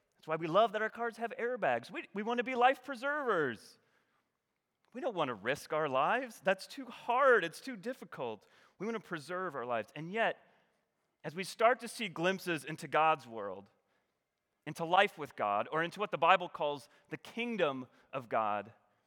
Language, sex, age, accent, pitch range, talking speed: English, male, 30-49, American, 165-240 Hz, 190 wpm